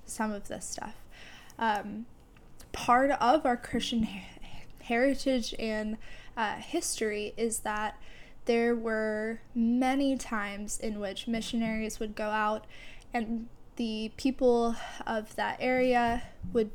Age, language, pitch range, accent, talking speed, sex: 10-29, English, 215-245 Hz, American, 115 wpm, female